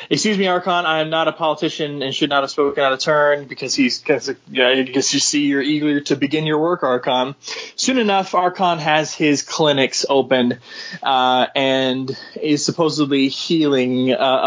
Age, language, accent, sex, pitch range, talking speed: 20-39, English, American, male, 135-175 Hz, 180 wpm